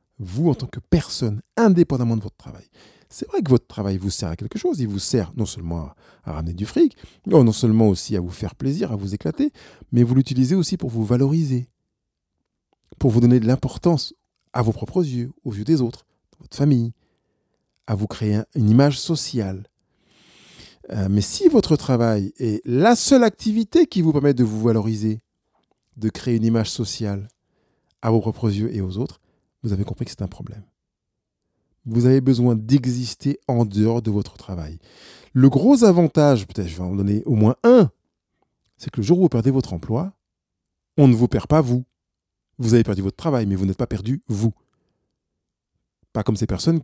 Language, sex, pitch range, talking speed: French, male, 100-135 Hz, 195 wpm